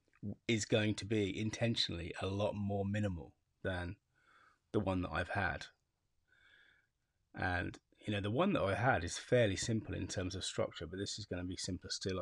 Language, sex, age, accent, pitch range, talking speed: English, male, 30-49, British, 95-115 Hz, 185 wpm